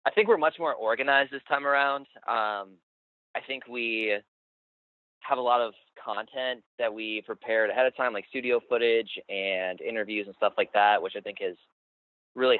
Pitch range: 100-130 Hz